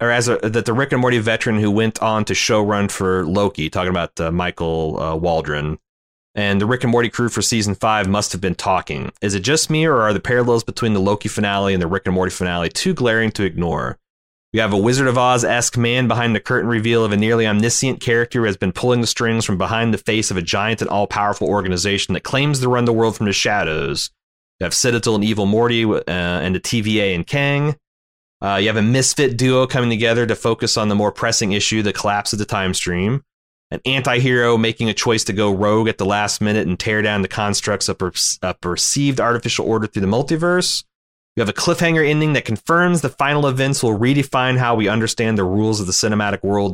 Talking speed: 230 wpm